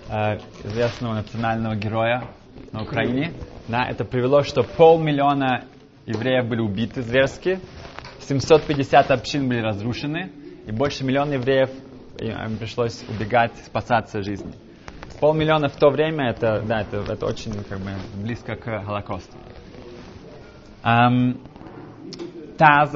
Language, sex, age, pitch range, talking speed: Russian, male, 20-39, 110-140 Hz, 95 wpm